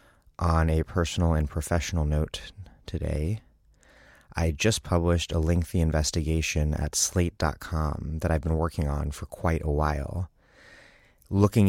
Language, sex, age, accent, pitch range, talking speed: English, male, 30-49, American, 75-90 Hz, 130 wpm